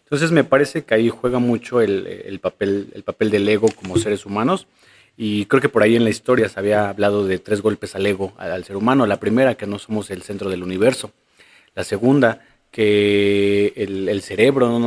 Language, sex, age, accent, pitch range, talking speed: Spanish, male, 40-59, Mexican, 100-120 Hz, 215 wpm